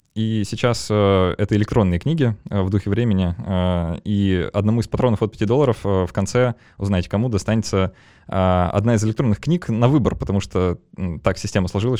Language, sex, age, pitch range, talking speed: Russian, male, 20-39, 95-115 Hz, 185 wpm